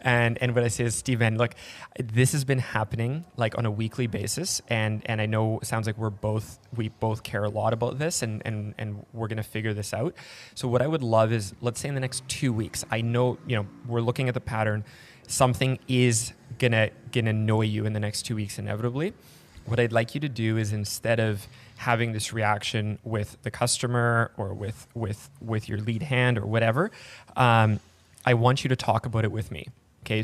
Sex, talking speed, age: male, 220 wpm, 20-39